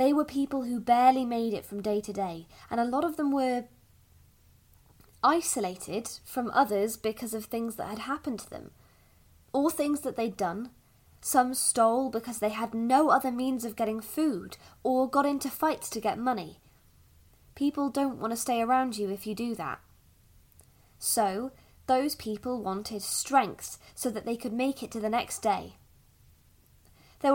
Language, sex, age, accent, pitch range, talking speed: English, female, 20-39, British, 215-270 Hz, 170 wpm